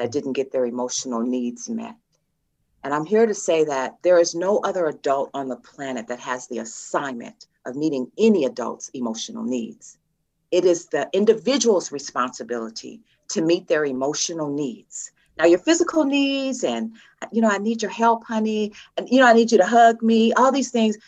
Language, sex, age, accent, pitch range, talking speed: English, female, 40-59, American, 150-225 Hz, 185 wpm